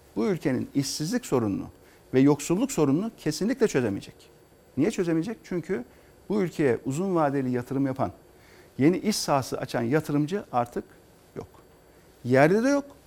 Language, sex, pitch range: Turkish, male, 140-200 Hz